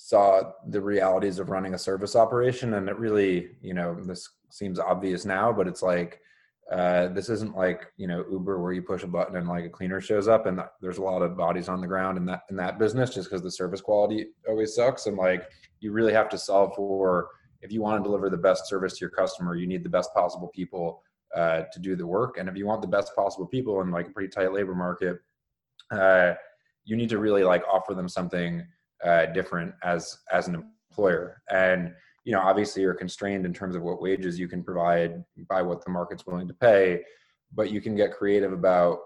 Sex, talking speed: male, 225 wpm